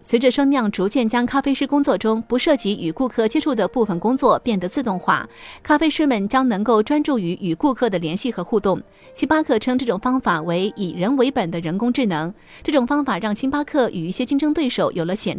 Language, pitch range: Chinese, 195-275 Hz